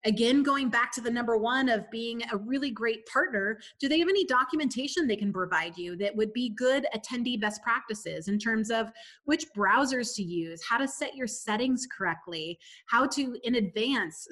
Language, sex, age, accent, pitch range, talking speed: English, female, 30-49, American, 210-275 Hz, 195 wpm